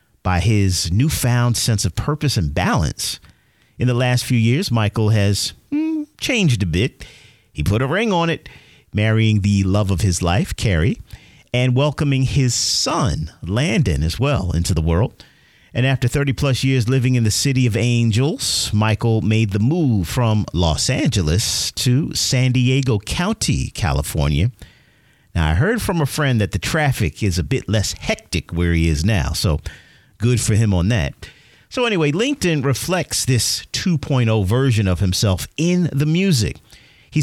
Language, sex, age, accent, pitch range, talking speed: English, male, 50-69, American, 100-135 Hz, 165 wpm